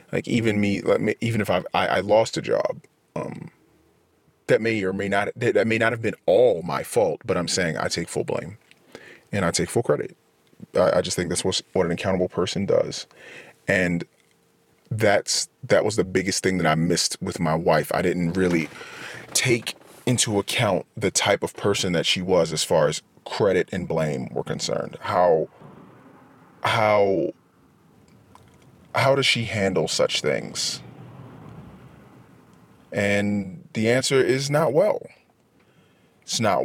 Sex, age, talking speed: male, 30-49, 160 wpm